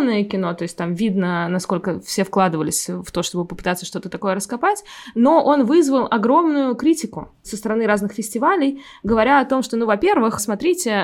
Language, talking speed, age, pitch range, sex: Russian, 170 wpm, 20-39, 195-250 Hz, female